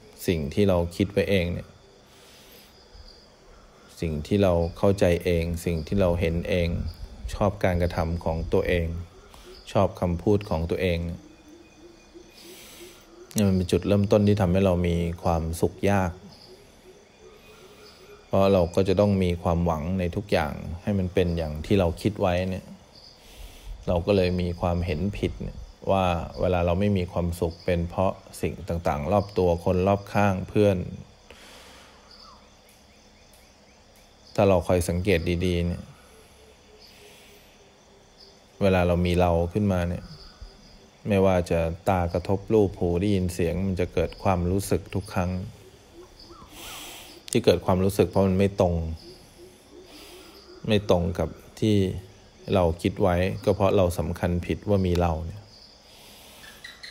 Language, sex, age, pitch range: English, male, 20-39, 85-100 Hz